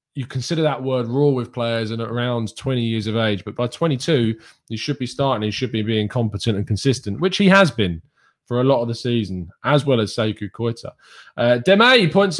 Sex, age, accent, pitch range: male, 20-39, British, 105-140 Hz